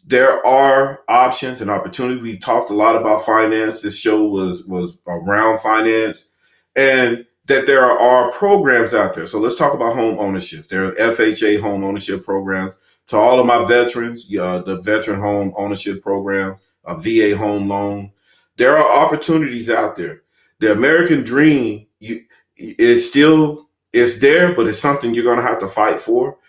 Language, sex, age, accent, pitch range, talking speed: English, male, 30-49, American, 100-130 Hz, 160 wpm